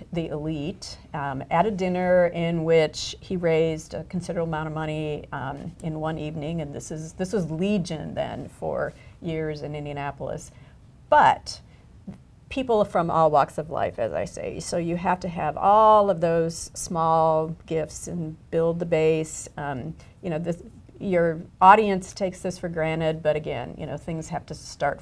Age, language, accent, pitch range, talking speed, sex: 50-69, English, American, 160-195 Hz, 175 wpm, female